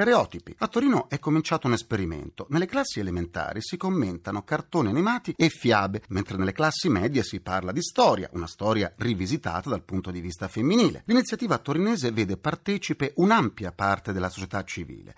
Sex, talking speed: male, 160 wpm